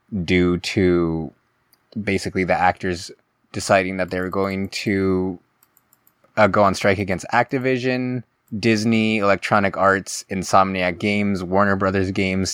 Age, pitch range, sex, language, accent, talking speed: 20-39, 90-105 Hz, male, English, American, 120 wpm